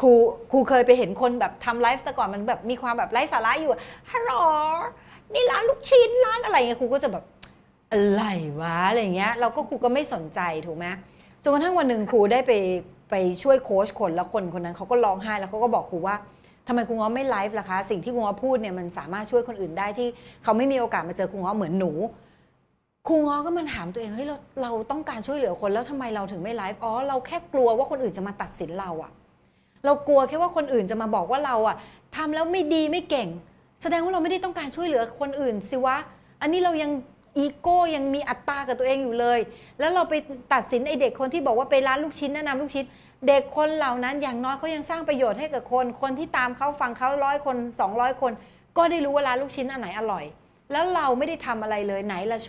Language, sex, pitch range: Thai, female, 210-285 Hz